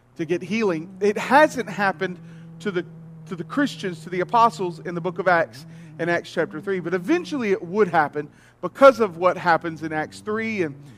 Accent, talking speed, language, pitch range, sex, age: American, 195 wpm, English, 165-205 Hz, male, 40-59